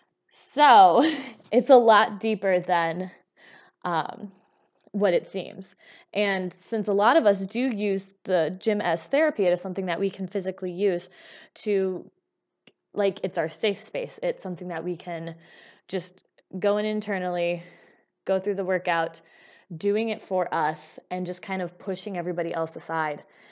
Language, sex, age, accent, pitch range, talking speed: English, female, 20-39, American, 170-205 Hz, 155 wpm